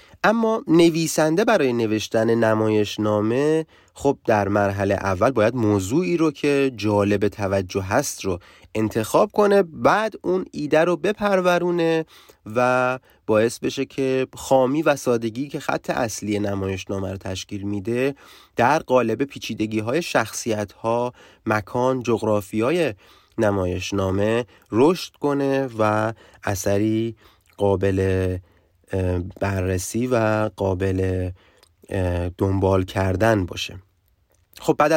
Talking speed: 110 wpm